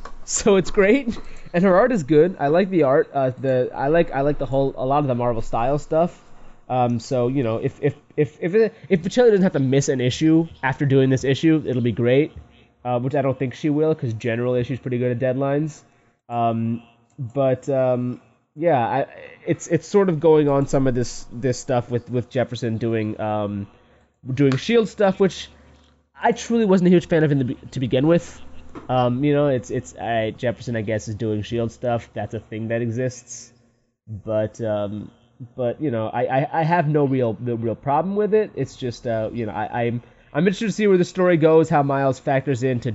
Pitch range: 115-150 Hz